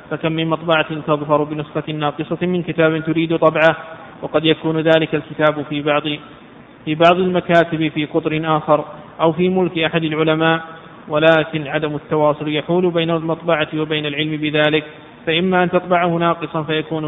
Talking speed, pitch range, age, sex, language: 145 wpm, 155-165 Hz, 20-39, male, Arabic